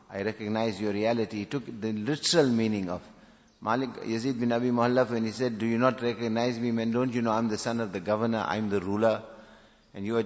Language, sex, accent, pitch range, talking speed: English, male, Indian, 105-125 Hz, 230 wpm